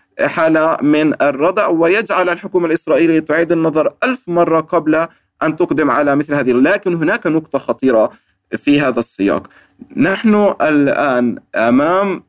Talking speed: 125 wpm